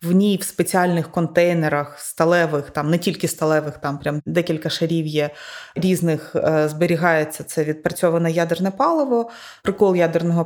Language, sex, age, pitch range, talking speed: Ukrainian, female, 20-39, 160-190 Hz, 140 wpm